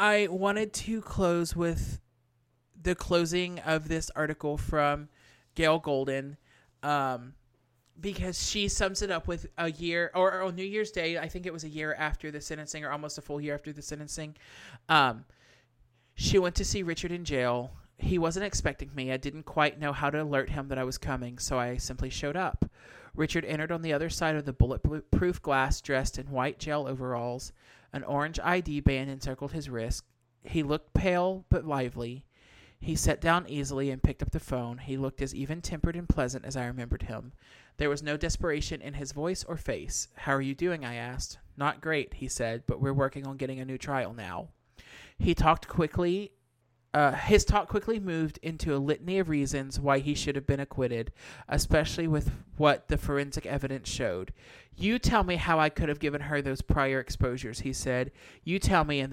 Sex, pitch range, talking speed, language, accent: male, 130-160 Hz, 195 wpm, English, American